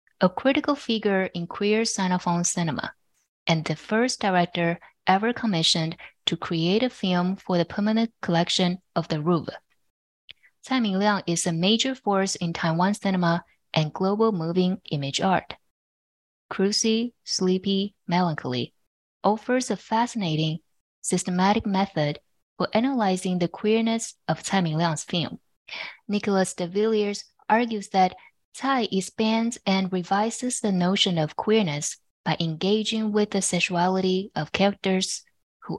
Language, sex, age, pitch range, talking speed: English, female, 20-39, 170-215 Hz, 120 wpm